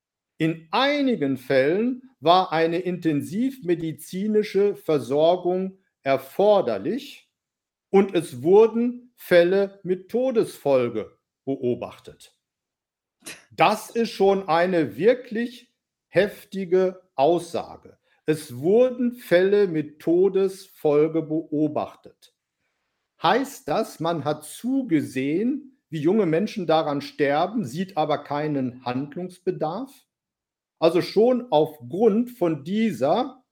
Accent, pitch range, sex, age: German, 155-230 Hz, male, 50-69